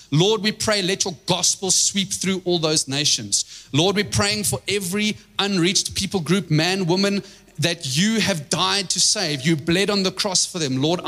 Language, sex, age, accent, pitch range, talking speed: English, male, 30-49, South African, 150-195 Hz, 190 wpm